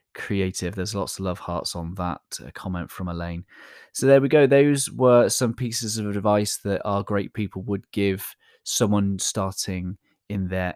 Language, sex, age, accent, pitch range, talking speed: English, male, 20-39, British, 90-115 Hz, 175 wpm